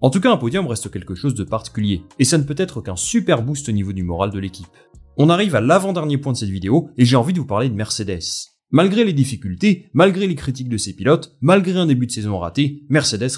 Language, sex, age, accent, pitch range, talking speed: French, male, 30-49, French, 100-145 Hz, 250 wpm